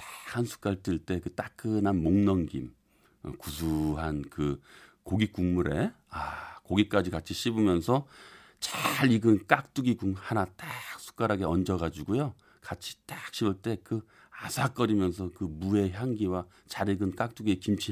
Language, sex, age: Korean, male, 40-59